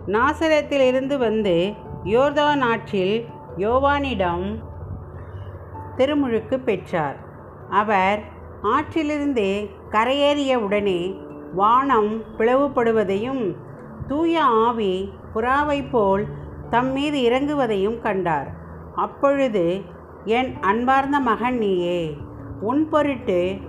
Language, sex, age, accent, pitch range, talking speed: Tamil, female, 50-69, native, 185-265 Hz, 70 wpm